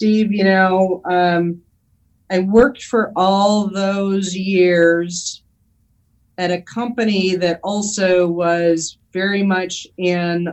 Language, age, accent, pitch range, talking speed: English, 40-59, American, 170-195 Hz, 110 wpm